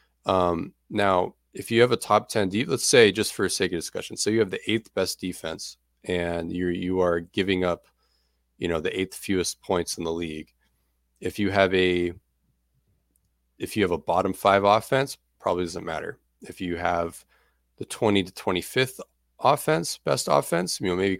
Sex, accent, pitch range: male, American, 85-110 Hz